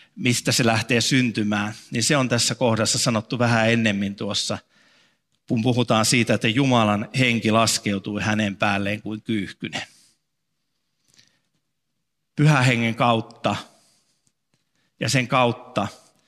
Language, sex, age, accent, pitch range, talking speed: Finnish, male, 50-69, native, 110-130 Hz, 110 wpm